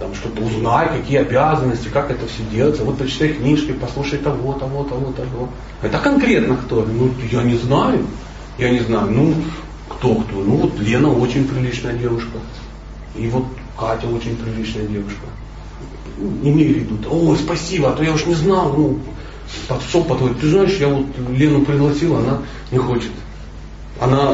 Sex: male